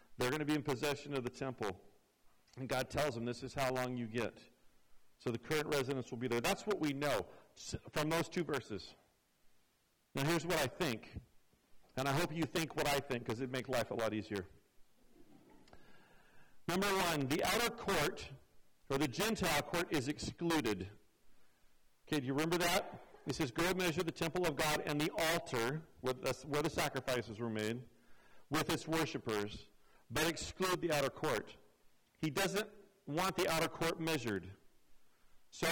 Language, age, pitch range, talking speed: English, 50-69, 130-170 Hz, 175 wpm